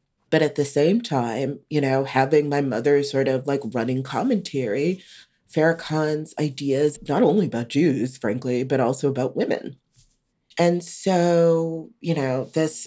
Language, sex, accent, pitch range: English, female, American, 130-165 Hz